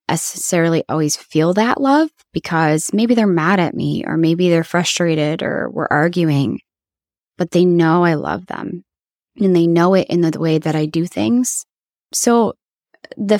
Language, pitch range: English, 165-205 Hz